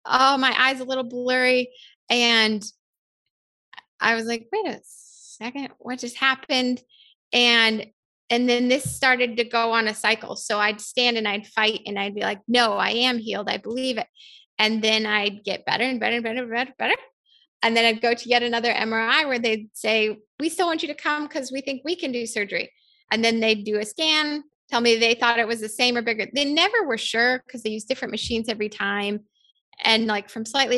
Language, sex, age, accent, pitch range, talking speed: English, female, 20-39, American, 220-265 Hz, 215 wpm